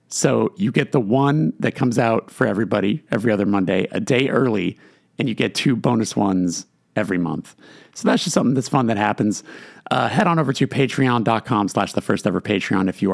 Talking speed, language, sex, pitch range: 205 wpm, English, male, 100-130 Hz